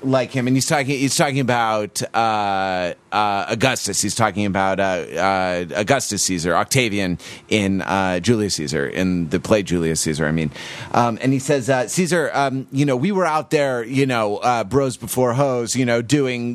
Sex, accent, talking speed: male, American, 190 wpm